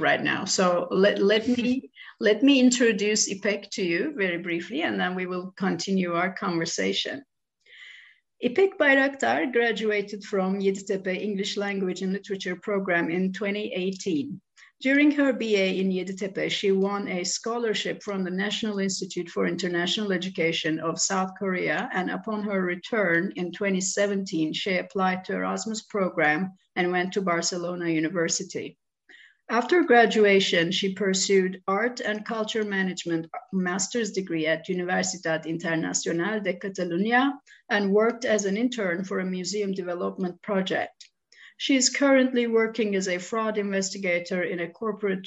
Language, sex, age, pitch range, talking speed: Turkish, female, 50-69, 180-210 Hz, 140 wpm